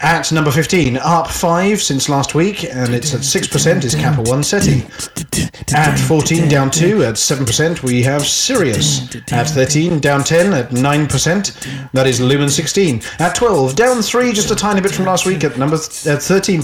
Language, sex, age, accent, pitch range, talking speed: English, male, 30-49, British, 135-175 Hz, 185 wpm